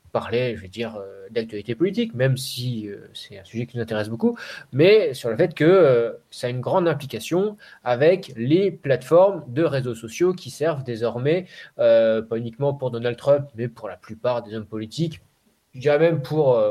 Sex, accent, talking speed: male, French, 180 wpm